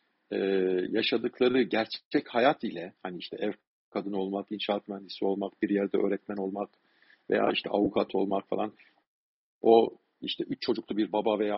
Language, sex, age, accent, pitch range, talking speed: Turkish, male, 50-69, native, 100-125 Hz, 145 wpm